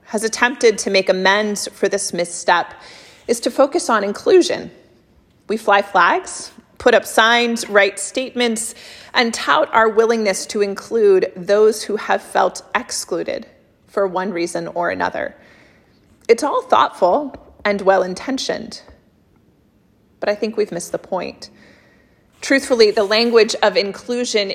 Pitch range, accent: 195-235 Hz, American